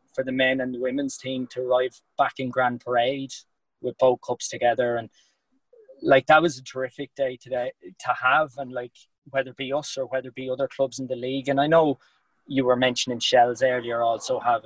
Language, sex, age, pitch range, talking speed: English, male, 20-39, 120-140 Hz, 215 wpm